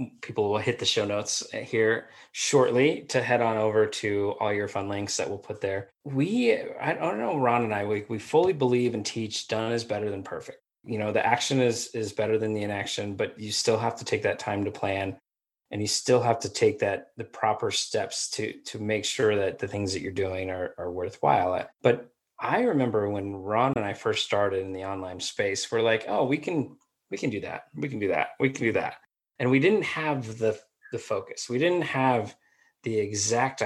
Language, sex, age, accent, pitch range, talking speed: English, male, 20-39, American, 105-125 Hz, 220 wpm